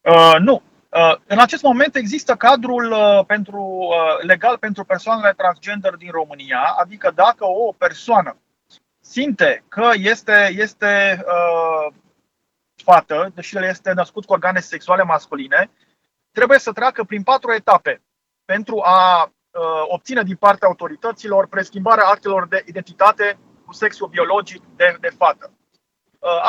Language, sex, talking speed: Romanian, male, 135 wpm